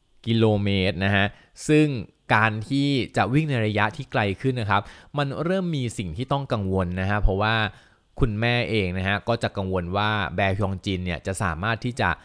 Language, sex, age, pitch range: Thai, male, 20-39, 95-125 Hz